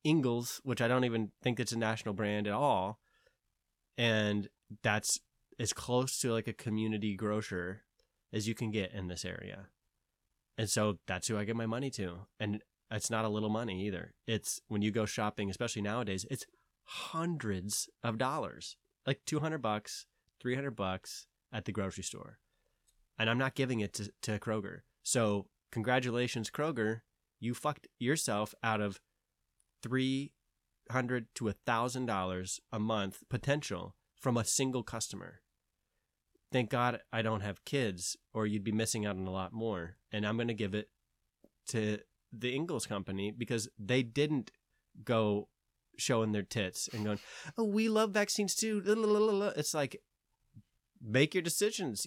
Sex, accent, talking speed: male, American, 155 wpm